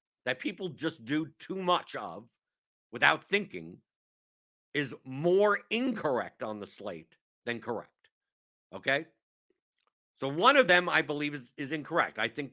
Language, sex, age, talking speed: English, male, 50-69, 140 wpm